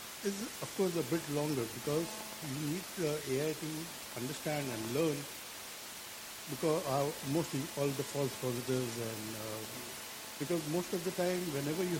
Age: 60-79